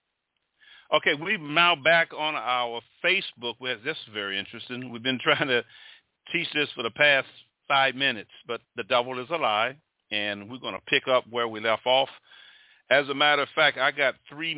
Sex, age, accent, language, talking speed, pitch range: male, 50-69, American, English, 190 wpm, 115-150 Hz